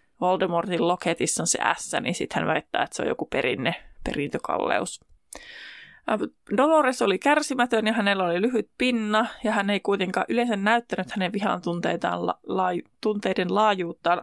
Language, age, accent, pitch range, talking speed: Finnish, 20-39, native, 185-235 Hz, 145 wpm